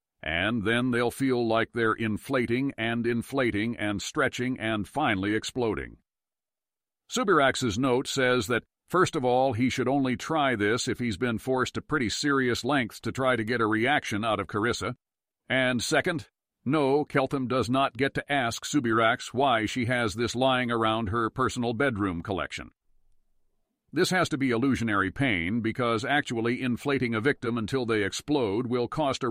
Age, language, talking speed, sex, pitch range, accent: 60-79, English, 165 wpm, male, 110-130 Hz, American